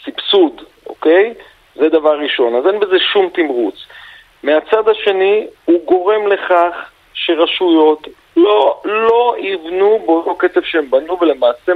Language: Hebrew